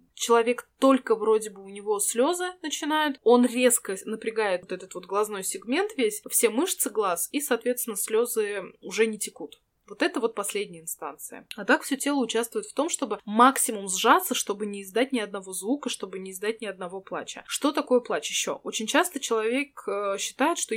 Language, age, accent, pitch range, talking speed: Russian, 20-39, native, 205-260 Hz, 180 wpm